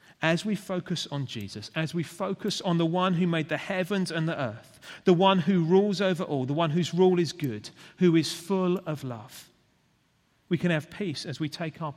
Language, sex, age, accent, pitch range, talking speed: English, male, 40-59, British, 125-165 Hz, 215 wpm